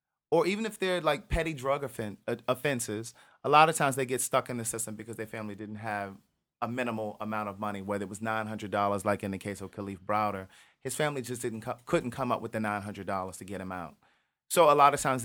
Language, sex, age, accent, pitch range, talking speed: English, male, 30-49, American, 110-150 Hz, 235 wpm